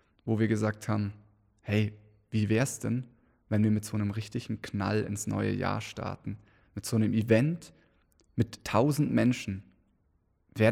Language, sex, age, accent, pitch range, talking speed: German, male, 20-39, German, 105-125 Hz, 155 wpm